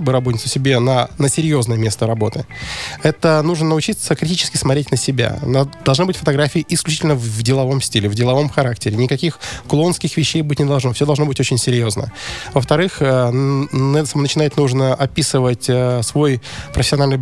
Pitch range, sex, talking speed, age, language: 130-160 Hz, male, 145 wpm, 20-39, Russian